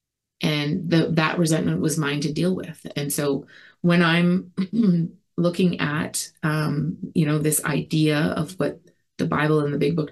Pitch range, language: 145-170 Hz, English